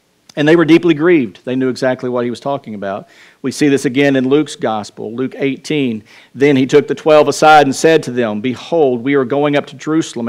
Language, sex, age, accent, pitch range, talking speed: English, male, 50-69, American, 125-160 Hz, 225 wpm